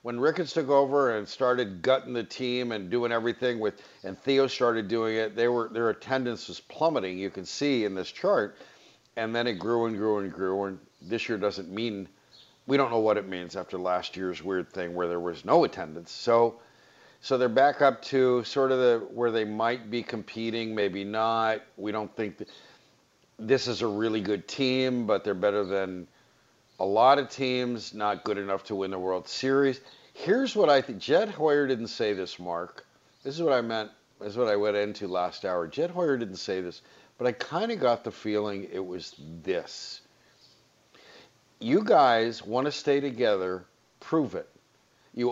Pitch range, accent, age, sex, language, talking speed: 100-125 Hz, American, 50-69, male, English, 195 wpm